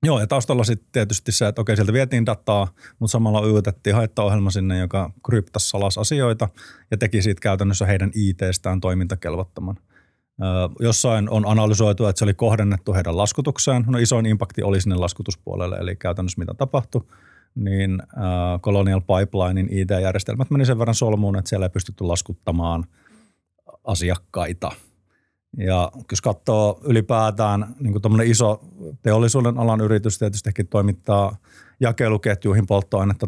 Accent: native